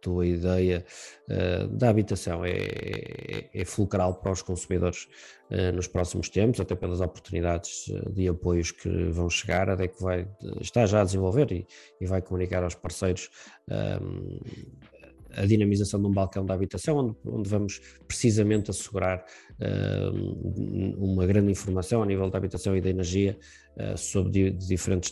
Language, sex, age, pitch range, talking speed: Portuguese, male, 20-39, 90-105 Hz, 160 wpm